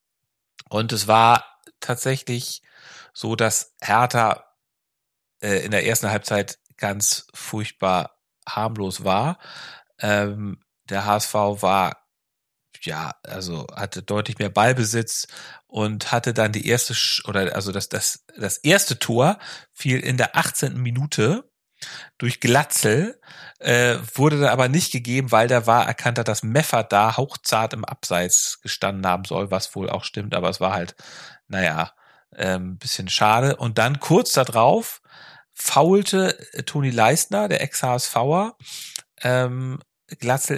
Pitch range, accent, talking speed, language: 110-140 Hz, German, 135 wpm, German